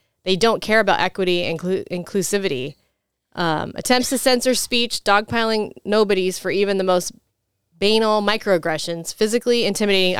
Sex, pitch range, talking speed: female, 180-215 Hz, 130 wpm